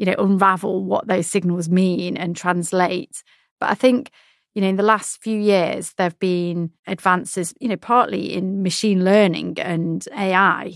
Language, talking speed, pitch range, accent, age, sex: English, 175 wpm, 175-200 Hz, British, 30-49, female